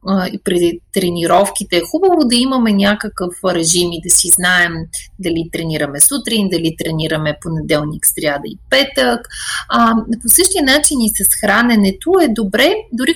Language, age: Bulgarian, 30-49